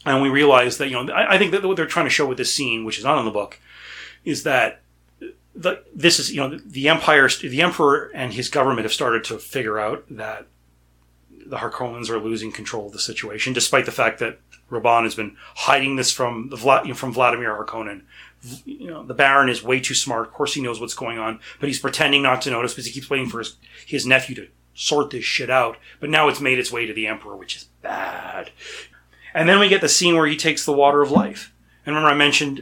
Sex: male